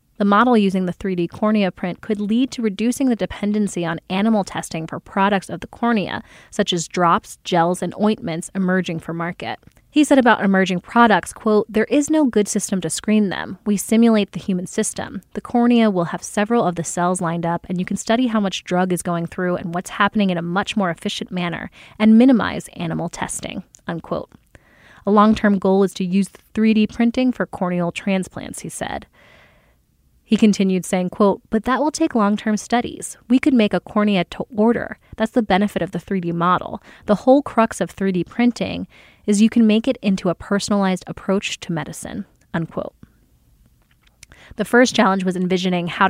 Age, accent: 20-39, American